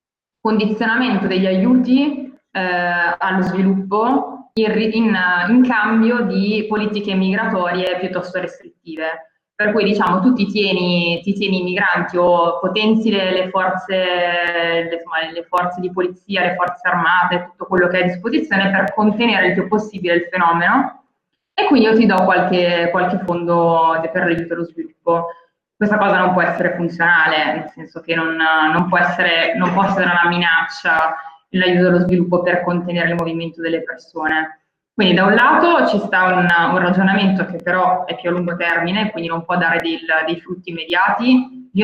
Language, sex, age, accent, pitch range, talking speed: Italian, female, 20-39, native, 170-200 Hz, 165 wpm